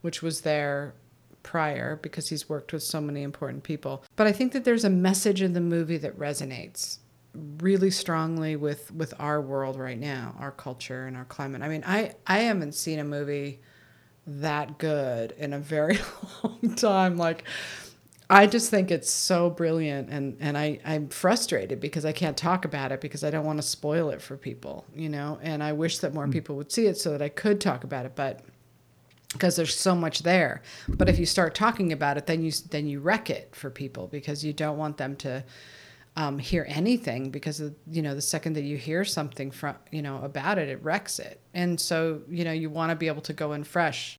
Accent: American